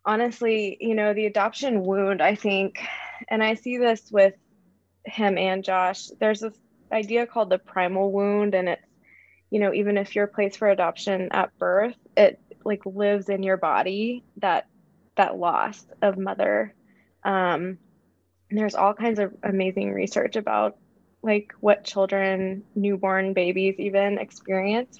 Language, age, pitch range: English, 20-39, 190-220 Hz